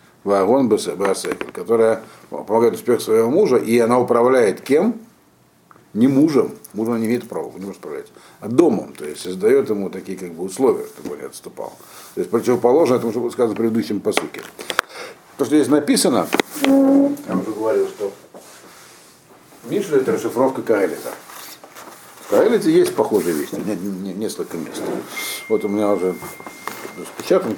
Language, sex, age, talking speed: Russian, male, 60-79, 140 wpm